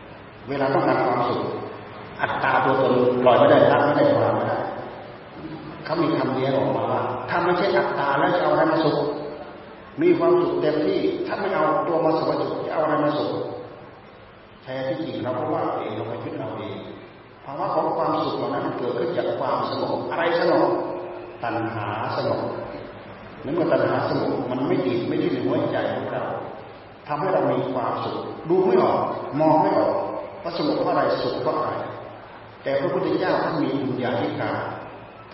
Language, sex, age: Thai, male, 30-49